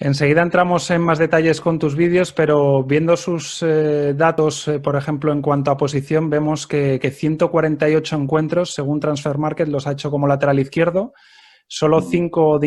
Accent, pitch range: Spanish, 140-160 Hz